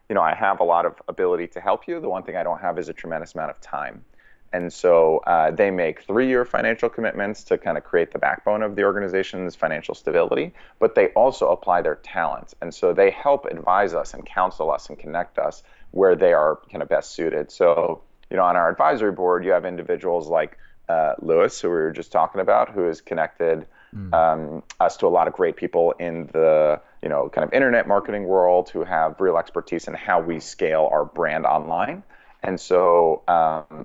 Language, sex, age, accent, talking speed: English, male, 30-49, American, 215 wpm